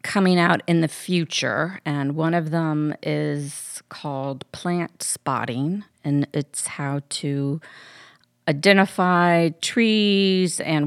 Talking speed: 110 wpm